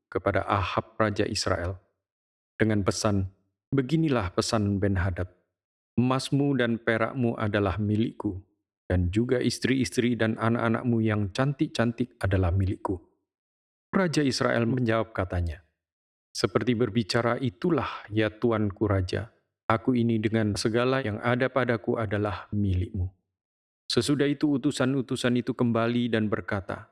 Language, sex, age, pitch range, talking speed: Indonesian, male, 40-59, 100-125 Hz, 110 wpm